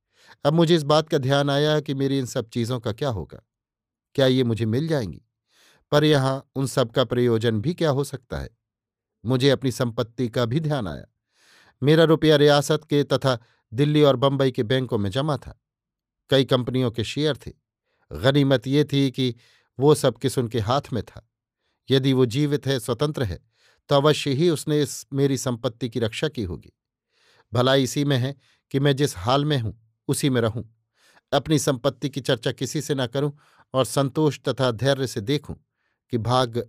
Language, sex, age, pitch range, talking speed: Hindi, male, 50-69, 120-145 Hz, 180 wpm